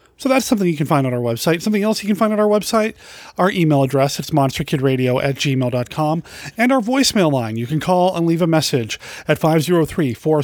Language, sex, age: English, male, 30-49